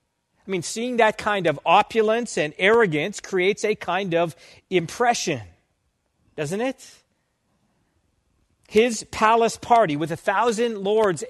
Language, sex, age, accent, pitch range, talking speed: English, male, 40-59, American, 160-215 Hz, 120 wpm